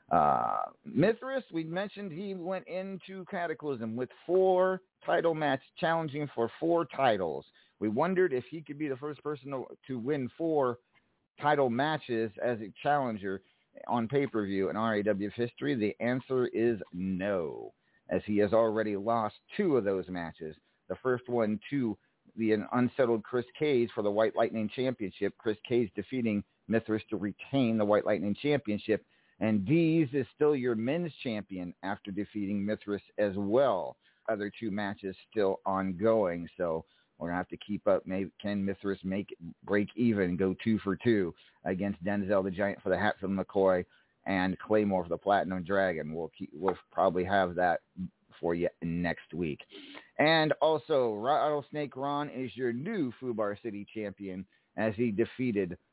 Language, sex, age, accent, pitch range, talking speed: English, male, 50-69, American, 100-135 Hz, 160 wpm